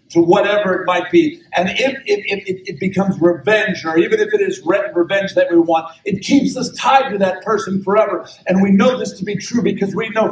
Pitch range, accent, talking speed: 135-200 Hz, American, 235 wpm